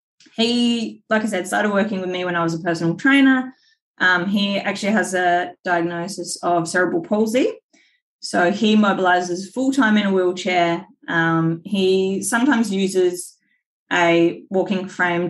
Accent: Australian